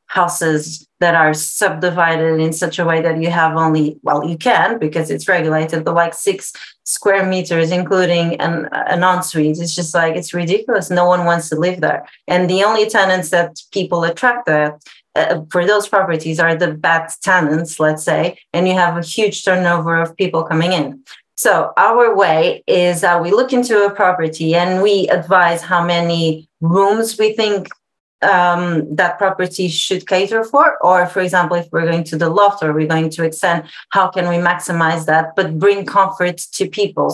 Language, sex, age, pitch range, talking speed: English, female, 30-49, 165-195 Hz, 185 wpm